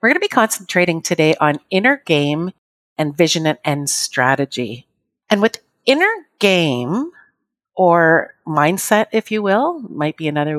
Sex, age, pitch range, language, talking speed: female, 50-69, 165-225 Hz, English, 140 wpm